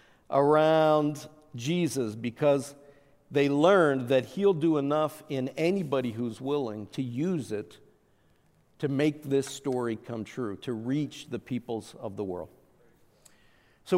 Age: 50-69